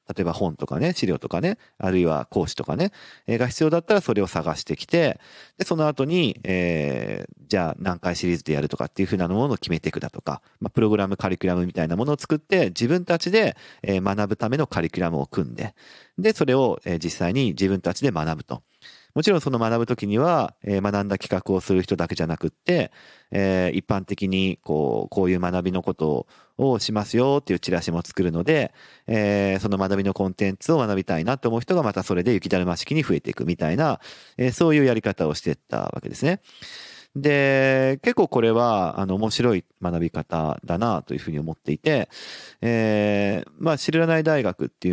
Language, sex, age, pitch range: Japanese, male, 40-59, 90-130 Hz